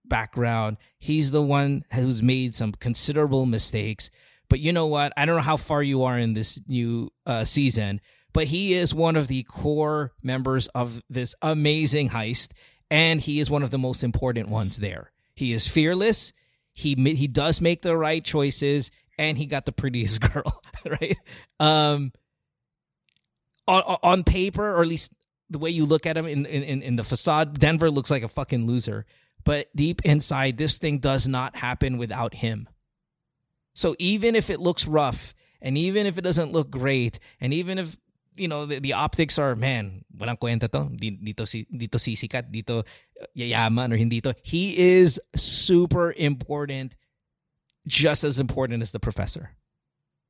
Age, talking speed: 30-49, 155 wpm